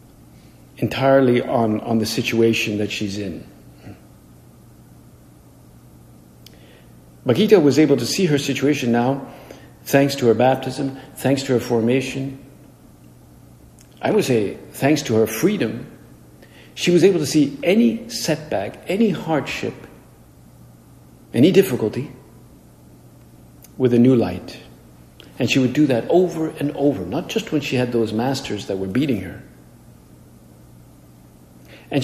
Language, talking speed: English, 125 wpm